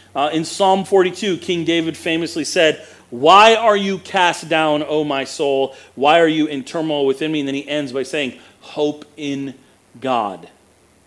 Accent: American